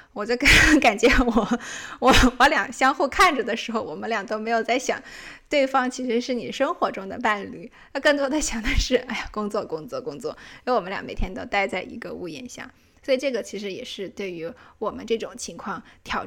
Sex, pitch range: female, 210-245 Hz